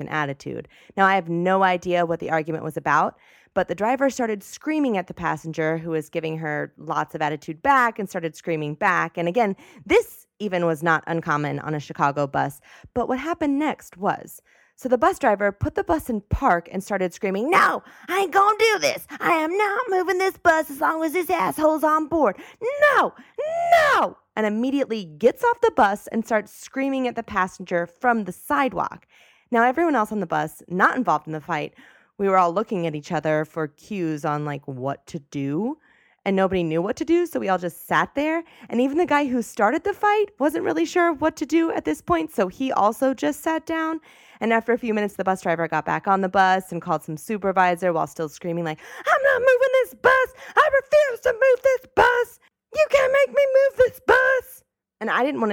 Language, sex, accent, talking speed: English, female, American, 215 wpm